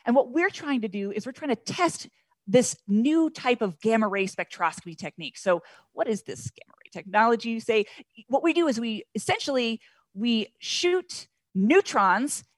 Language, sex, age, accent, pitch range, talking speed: English, female, 30-49, American, 200-255 Hz, 175 wpm